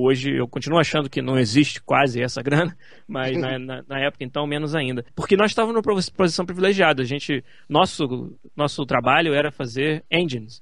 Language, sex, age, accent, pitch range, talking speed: Portuguese, male, 20-39, Brazilian, 130-165 Hz, 180 wpm